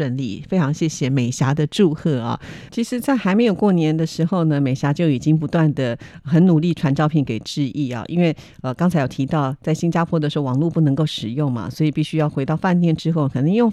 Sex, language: female, Chinese